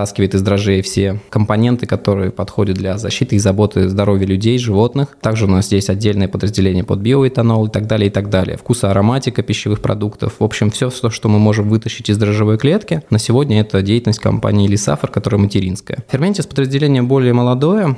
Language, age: Russian, 20-39